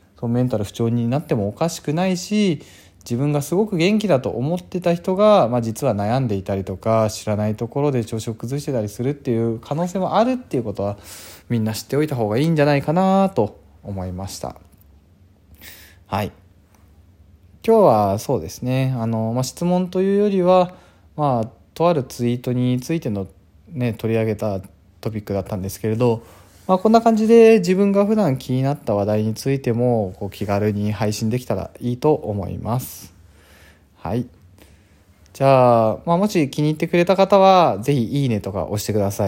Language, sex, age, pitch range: Japanese, male, 20-39, 95-145 Hz